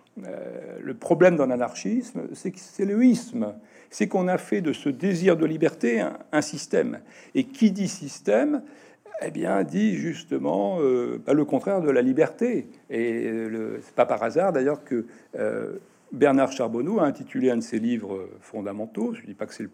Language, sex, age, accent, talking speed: French, male, 60-79, French, 180 wpm